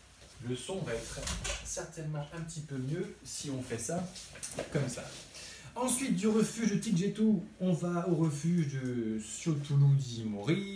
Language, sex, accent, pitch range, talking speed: French, male, French, 125-175 Hz, 145 wpm